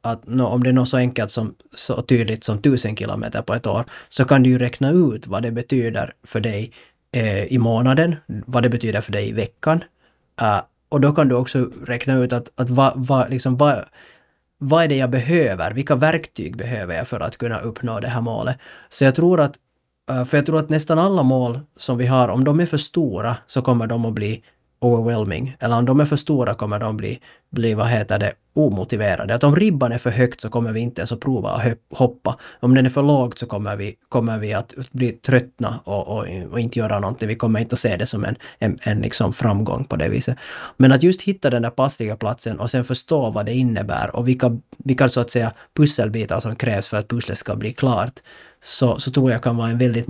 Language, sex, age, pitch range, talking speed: Swedish, male, 20-39, 115-130 Hz, 225 wpm